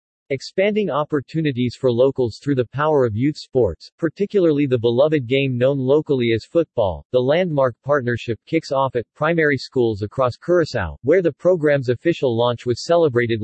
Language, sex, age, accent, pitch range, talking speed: English, male, 40-59, American, 120-150 Hz, 155 wpm